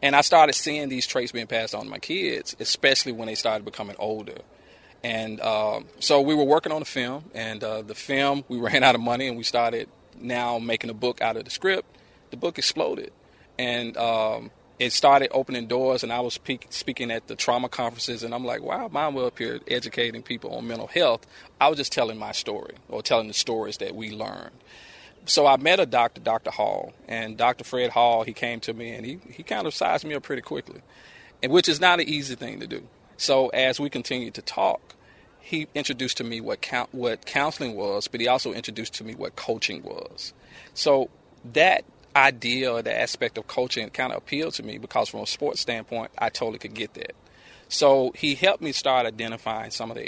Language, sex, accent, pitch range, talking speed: English, male, American, 115-135 Hz, 215 wpm